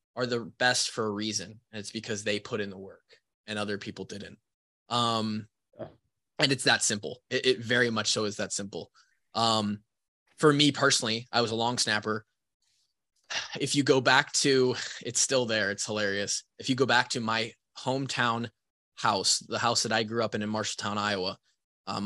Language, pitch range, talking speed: English, 105-120 Hz, 190 wpm